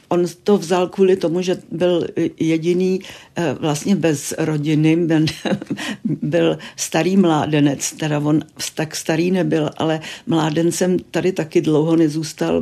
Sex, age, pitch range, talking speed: female, 60-79, 150-180 Hz, 120 wpm